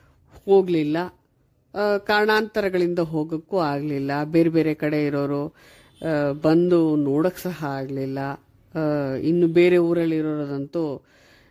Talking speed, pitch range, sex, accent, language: 85 wpm, 140-170 Hz, female, native, Kannada